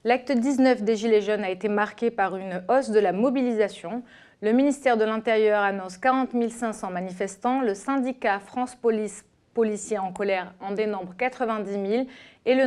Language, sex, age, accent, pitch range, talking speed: French, female, 30-49, French, 195-240 Hz, 165 wpm